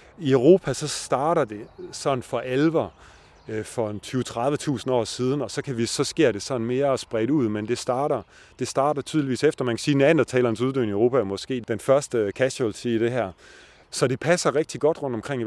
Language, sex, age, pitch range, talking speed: Danish, male, 30-49, 120-145 Hz, 215 wpm